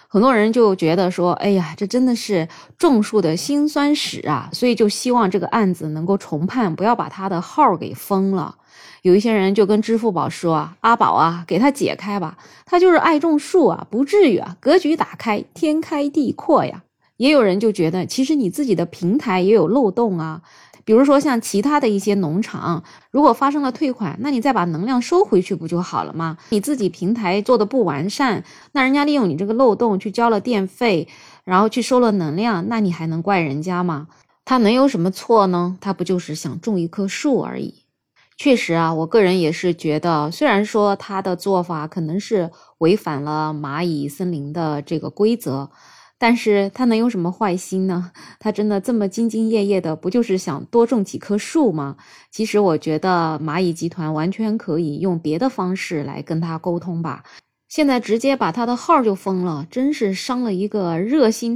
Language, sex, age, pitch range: Chinese, female, 20-39, 170-235 Hz